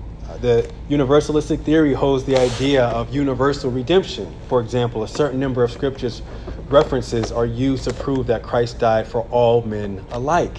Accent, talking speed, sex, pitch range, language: American, 160 wpm, male, 110-140 Hz, English